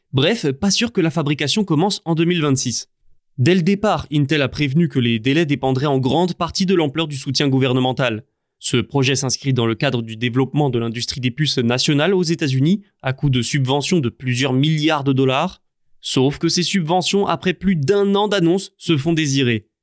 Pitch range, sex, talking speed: 135-175 Hz, male, 195 wpm